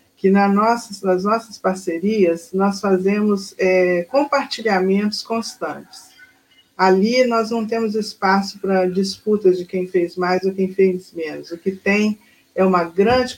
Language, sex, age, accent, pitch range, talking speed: Portuguese, female, 50-69, Brazilian, 185-215 Hz, 135 wpm